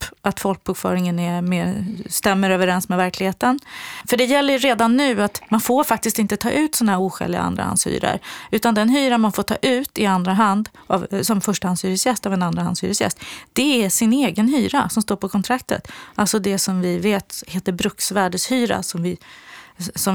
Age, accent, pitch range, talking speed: 30-49, native, 185-235 Hz, 185 wpm